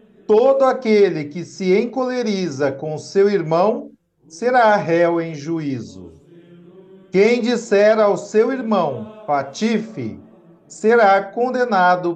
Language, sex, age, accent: Portuguese, male, 50-69, Brazilian